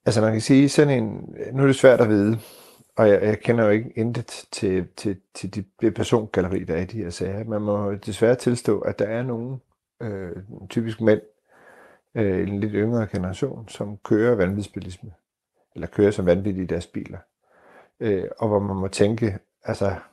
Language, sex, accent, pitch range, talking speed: Danish, male, native, 95-115 Hz, 185 wpm